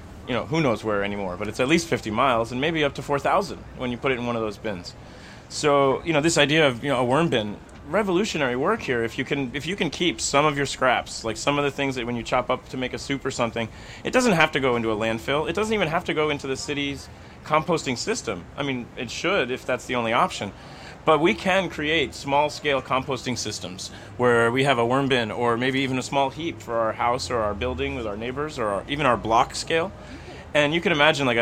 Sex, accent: male, American